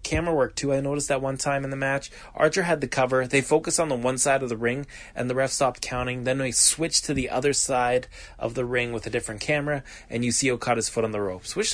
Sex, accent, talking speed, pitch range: male, American, 265 wpm, 115-140 Hz